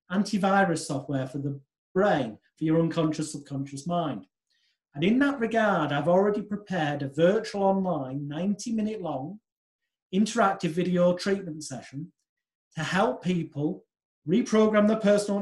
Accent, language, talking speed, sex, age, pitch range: British, English, 130 wpm, male, 40-59, 150-185 Hz